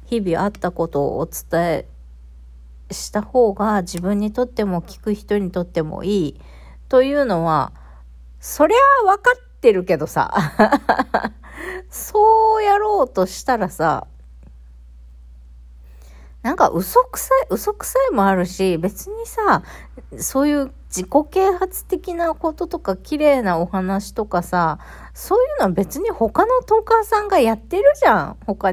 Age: 40-59